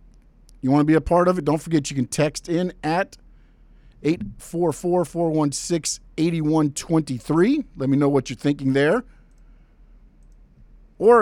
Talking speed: 130 wpm